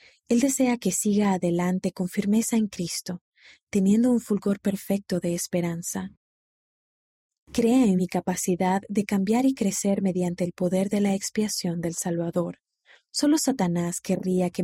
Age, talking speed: 30-49, 145 wpm